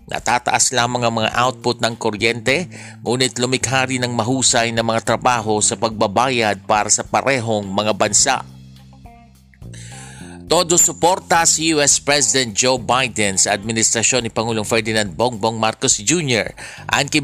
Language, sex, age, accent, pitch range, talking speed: Filipino, male, 50-69, native, 110-130 Hz, 130 wpm